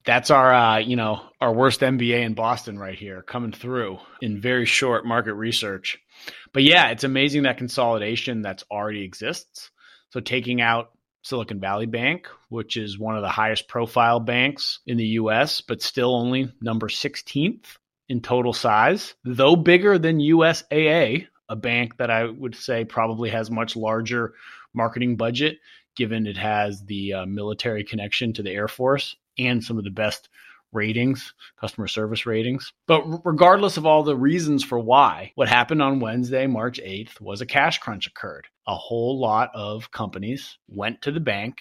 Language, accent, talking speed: English, American, 170 wpm